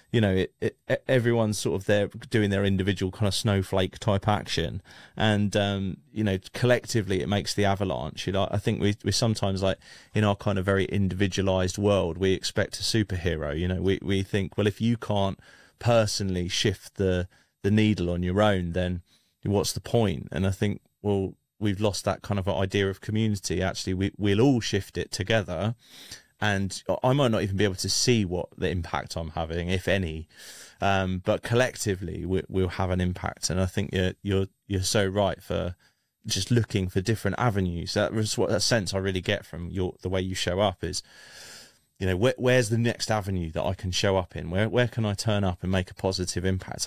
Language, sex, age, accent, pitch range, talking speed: English, male, 30-49, British, 95-105 Hz, 210 wpm